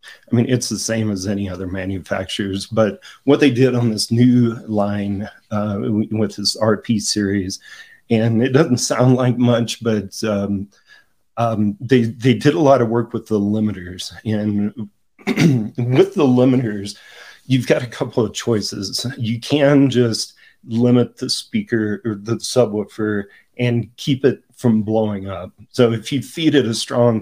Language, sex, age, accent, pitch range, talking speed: English, male, 40-59, American, 105-125 Hz, 160 wpm